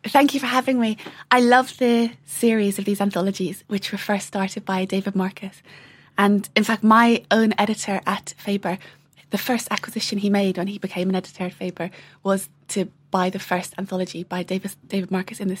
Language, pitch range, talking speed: English, 180-220 Hz, 190 wpm